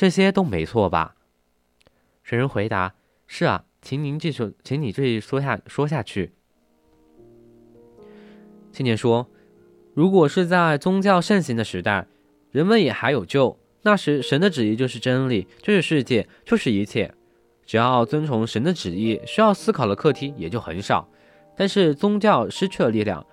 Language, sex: Chinese, male